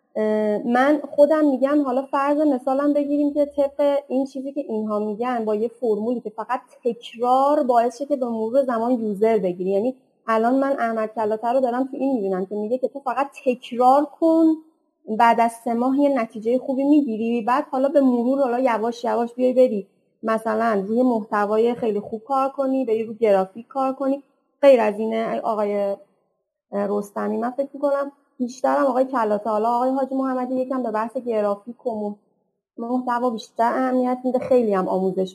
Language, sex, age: Persian, female, 30-49